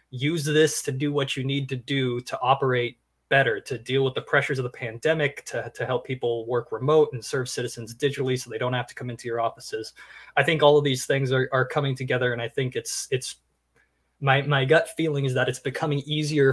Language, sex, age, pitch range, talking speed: English, male, 20-39, 125-145 Hz, 230 wpm